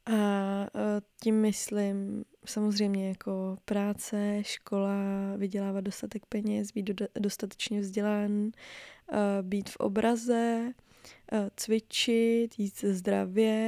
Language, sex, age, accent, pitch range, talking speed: Czech, female, 20-39, native, 200-220 Hz, 90 wpm